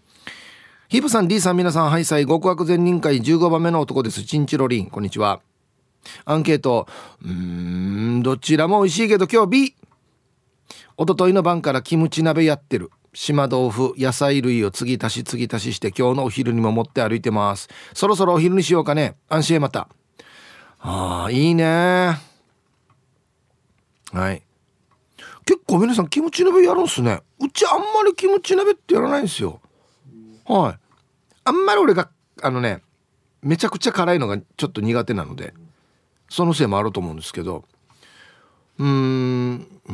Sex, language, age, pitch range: male, Japanese, 40-59, 120-180 Hz